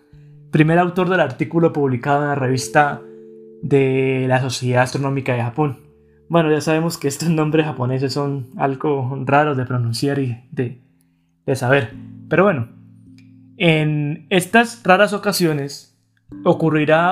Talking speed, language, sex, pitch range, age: 130 wpm, Spanish, male, 130-170 Hz, 20-39